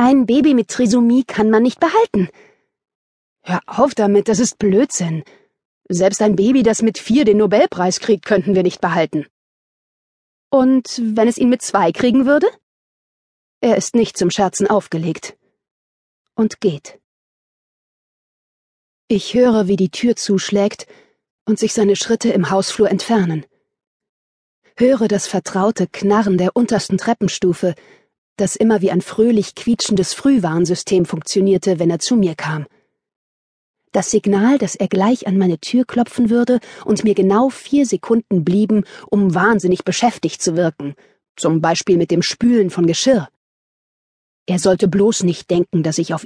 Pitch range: 180-235 Hz